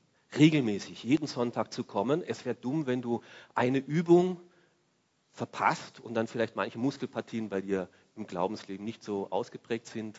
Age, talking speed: 40-59, 155 wpm